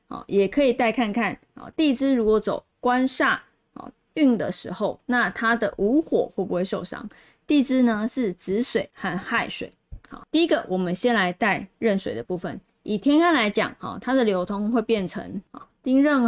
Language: Chinese